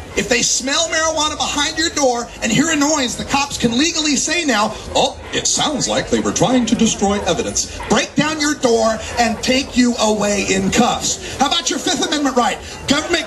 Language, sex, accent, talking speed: English, male, American, 190 wpm